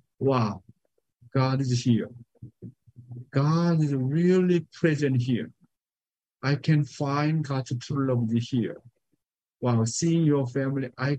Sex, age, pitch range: male, 60-79, 130-195 Hz